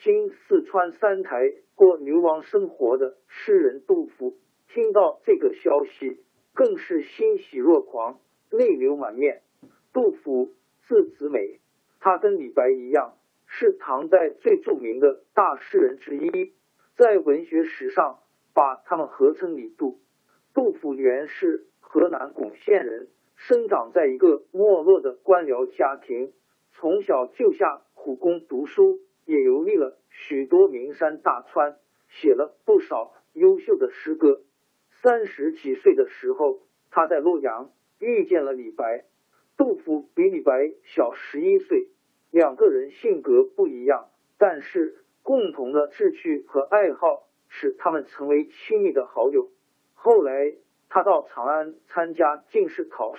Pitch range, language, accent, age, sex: 330-410 Hz, Chinese, native, 50-69, male